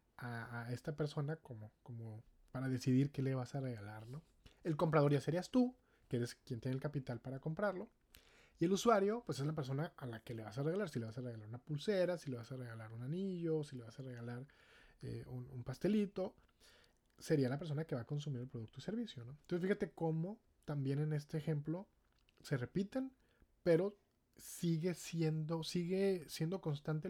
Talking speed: 200 wpm